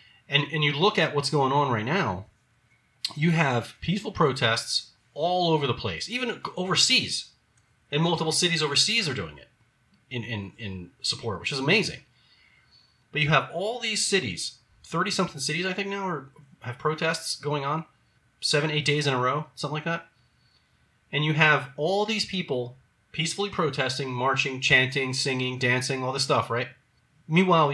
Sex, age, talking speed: male, 30-49, 165 wpm